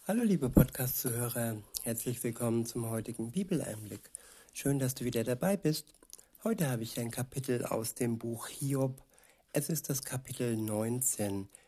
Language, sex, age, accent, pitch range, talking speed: German, male, 60-79, German, 120-150 Hz, 145 wpm